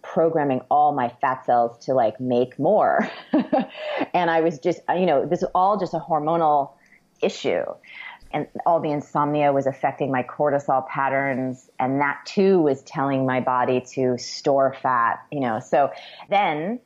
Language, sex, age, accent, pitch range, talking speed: English, female, 30-49, American, 130-165 Hz, 160 wpm